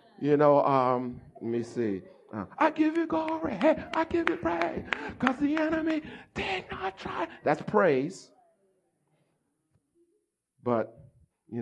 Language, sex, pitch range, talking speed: English, male, 145-225 Hz, 135 wpm